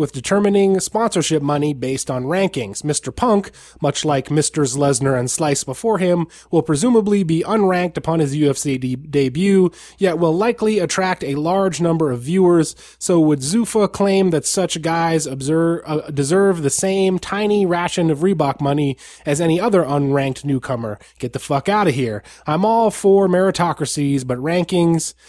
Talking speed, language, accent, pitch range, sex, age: 165 wpm, English, American, 140-175 Hz, male, 20-39